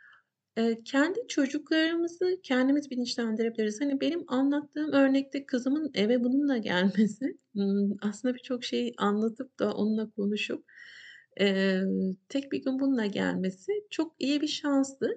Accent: native